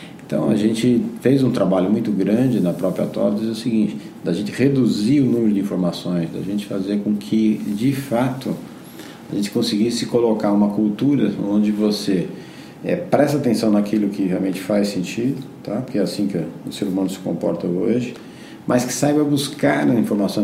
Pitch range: 90-110 Hz